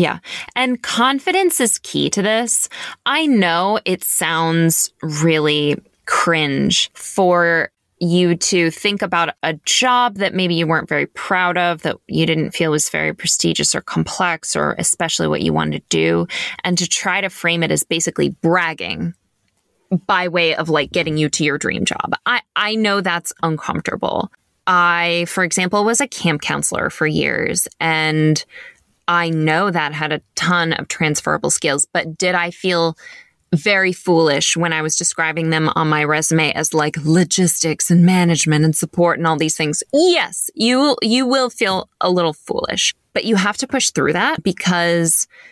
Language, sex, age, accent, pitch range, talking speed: English, female, 20-39, American, 160-200 Hz, 165 wpm